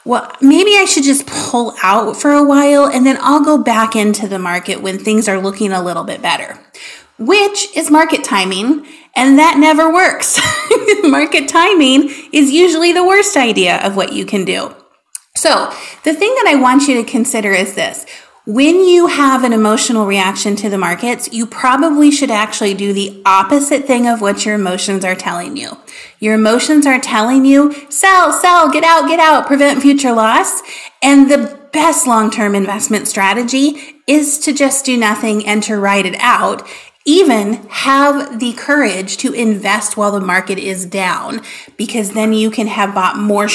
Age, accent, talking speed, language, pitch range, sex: 30-49, American, 180 wpm, English, 205-290 Hz, female